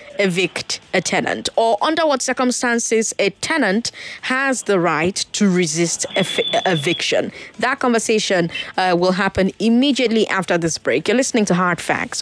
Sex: female